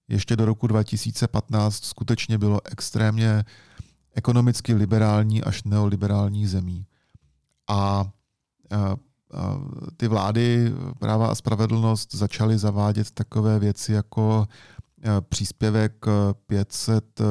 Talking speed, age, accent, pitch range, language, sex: 90 wpm, 40-59, native, 105-115 Hz, Czech, male